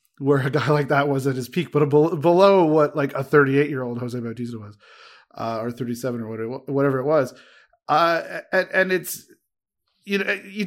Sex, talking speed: male, 190 wpm